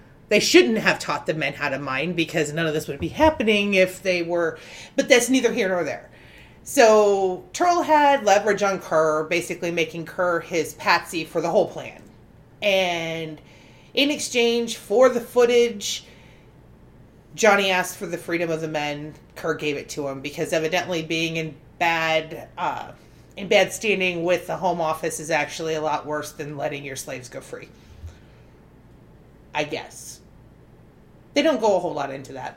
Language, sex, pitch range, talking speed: English, female, 155-205 Hz, 170 wpm